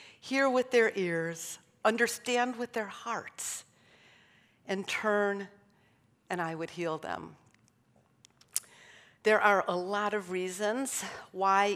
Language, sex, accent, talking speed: English, female, American, 110 wpm